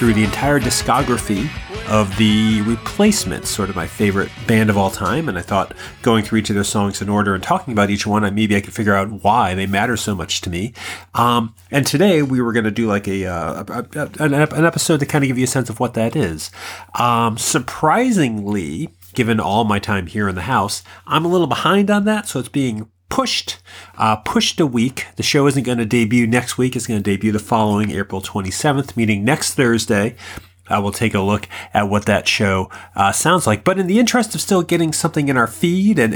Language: English